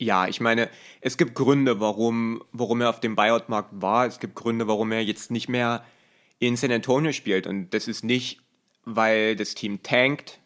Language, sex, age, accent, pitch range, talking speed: German, male, 30-49, German, 110-125 Hz, 190 wpm